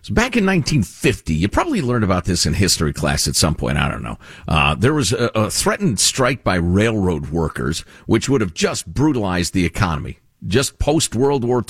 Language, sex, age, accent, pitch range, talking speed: English, male, 50-69, American, 85-130 Hz, 200 wpm